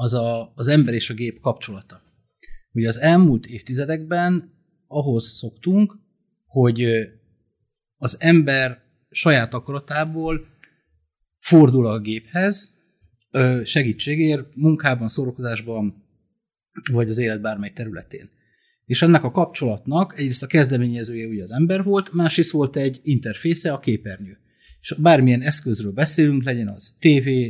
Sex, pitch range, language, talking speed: male, 115-160 Hz, Hungarian, 120 wpm